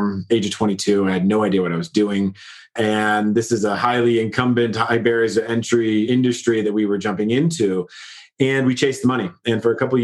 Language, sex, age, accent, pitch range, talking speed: English, male, 30-49, American, 105-125 Hz, 220 wpm